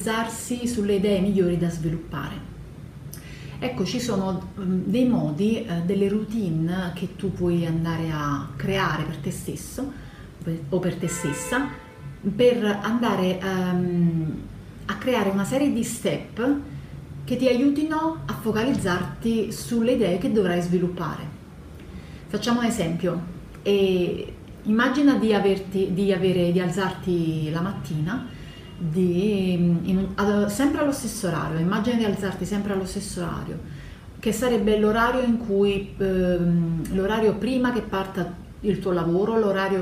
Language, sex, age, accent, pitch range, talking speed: Italian, female, 30-49, native, 170-220 Hz, 130 wpm